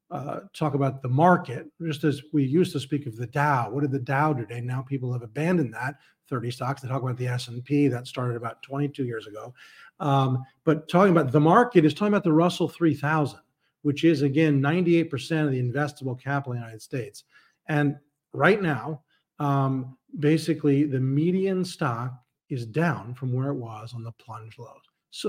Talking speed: 190 wpm